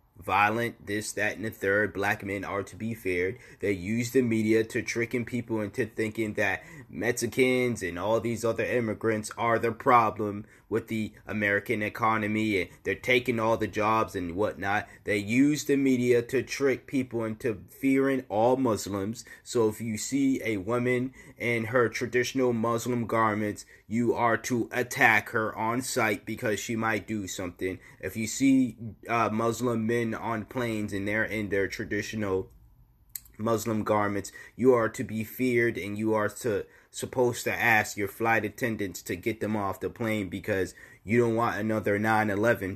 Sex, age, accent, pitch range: male, 20-39, American, 105-125 Hz